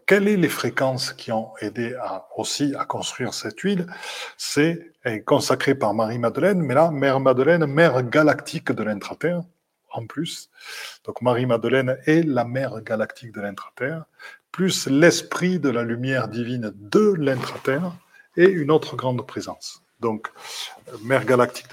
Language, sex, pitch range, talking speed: French, male, 115-155 Hz, 145 wpm